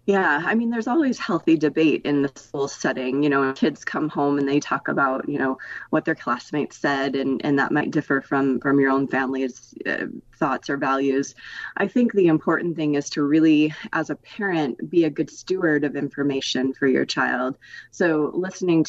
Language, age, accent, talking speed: English, 30-49, American, 195 wpm